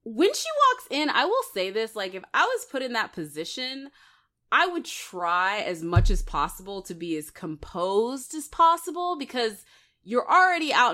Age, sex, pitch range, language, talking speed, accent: 20-39, female, 160-235 Hz, English, 180 wpm, American